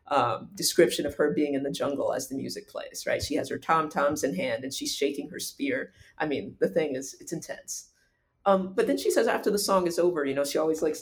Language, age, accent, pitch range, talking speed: English, 30-49, American, 140-195 Hz, 250 wpm